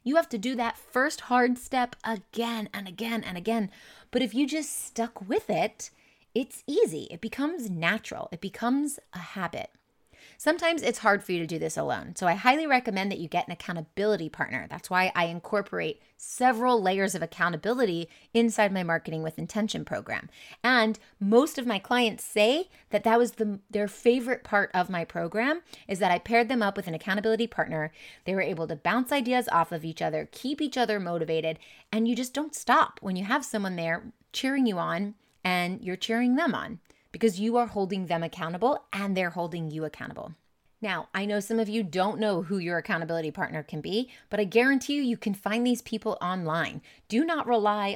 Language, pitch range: English, 175-235 Hz